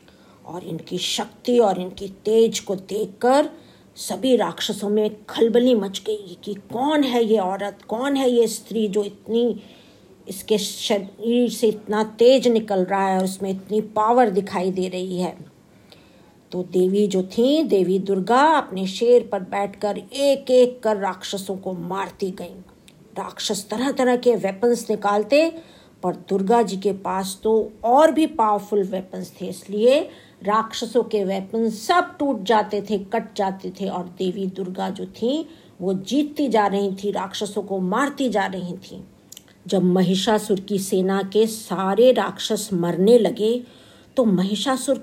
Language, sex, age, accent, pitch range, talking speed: Hindi, female, 50-69, native, 190-240 Hz, 150 wpm